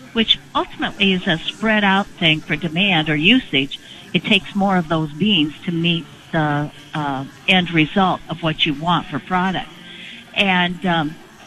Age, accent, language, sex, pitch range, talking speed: 50-69, American, English, female, 155-195 Hz, 155 wpm